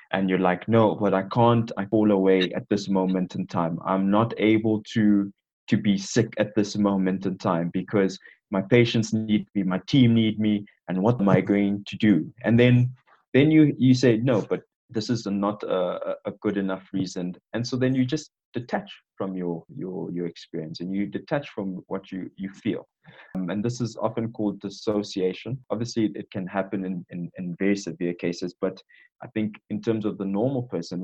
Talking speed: 200 wpm